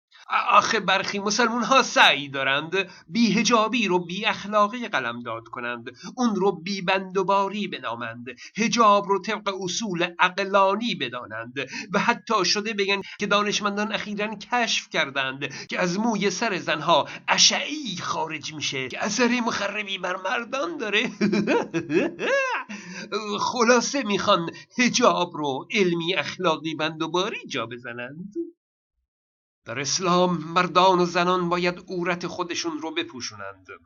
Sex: male